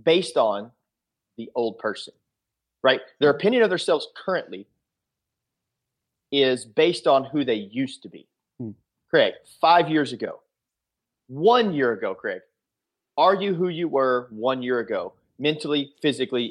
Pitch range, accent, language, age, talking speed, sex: 125-170 Hz, American, English, 40-59, 135 wpm, male